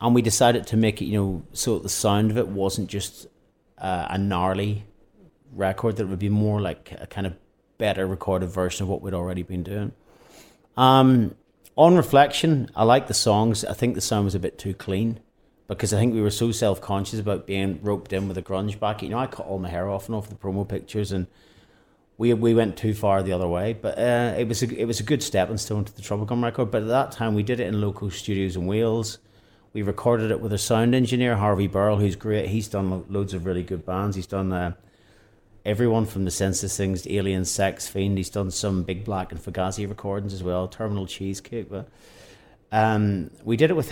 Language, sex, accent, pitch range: English, male, British, 95-115 Hz